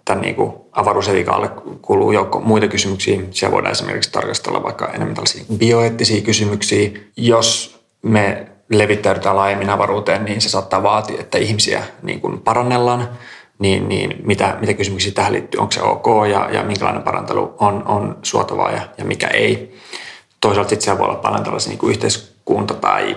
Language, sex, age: Finnish, male, 30-49